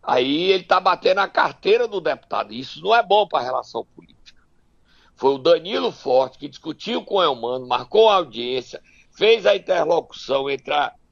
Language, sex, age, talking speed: Portuguese, male, 60-79, 180 wpm